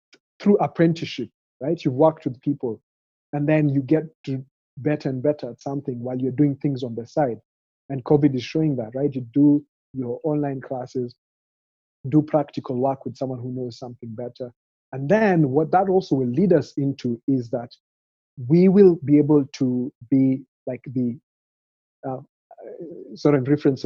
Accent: South African